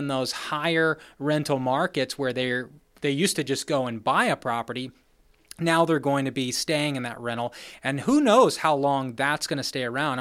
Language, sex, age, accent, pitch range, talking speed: English, male, 30-49, American, 135-190 Hz, 205 wpm